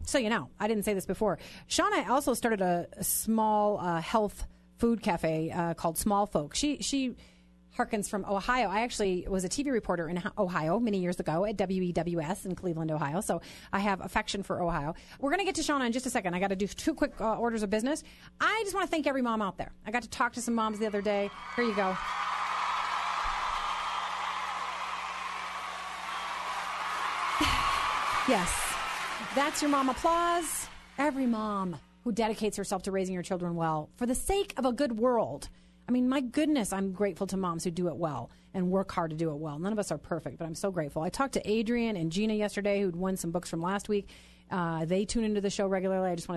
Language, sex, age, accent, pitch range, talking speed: English, female, 30-49, American, 185-250 Hz, 210 wpm